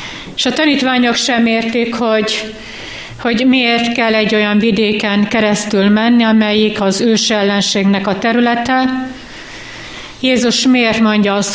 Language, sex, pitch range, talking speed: Hungarian, female, 200-225 Hz, 125 wpm